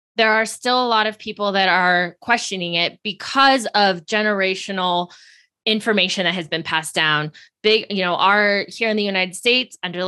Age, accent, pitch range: 20-39, American, 175-225 Hz